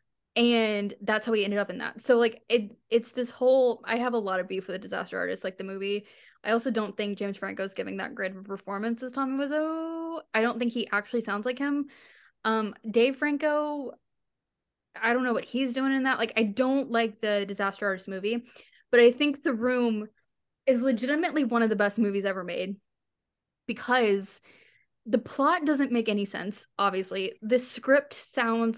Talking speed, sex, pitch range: 195 wpm, female, 205-250 Hz